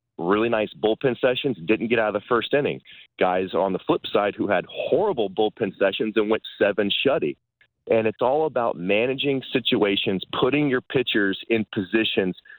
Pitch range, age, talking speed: 105-135 Hz, 30-49, 170 wpm